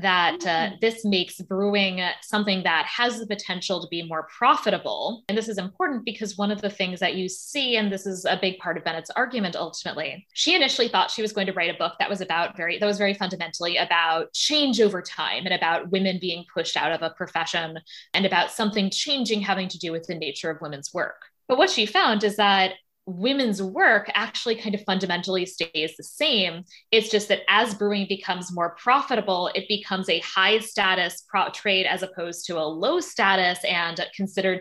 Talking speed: 205 wpm